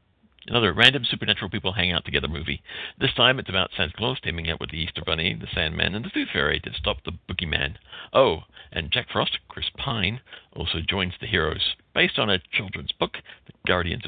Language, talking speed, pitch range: English, 200 wpm, 85-110 Hz